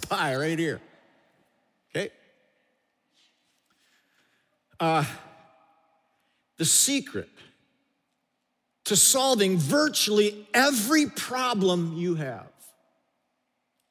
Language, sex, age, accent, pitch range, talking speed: English, male, 50-69, American, 125-170 Hz, 60 wpm